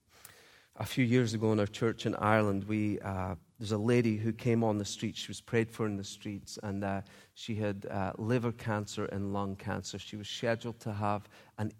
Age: 40-59